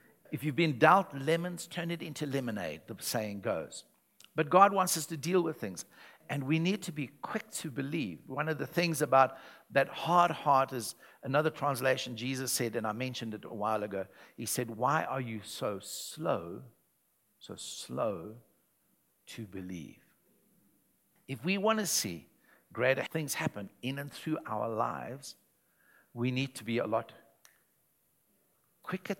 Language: English